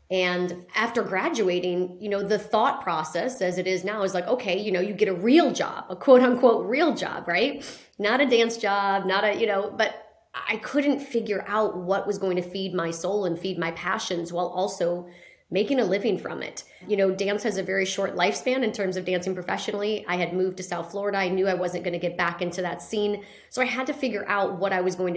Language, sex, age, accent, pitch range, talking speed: English, female, 30-49, American, 185-225 Hz, 235 wpm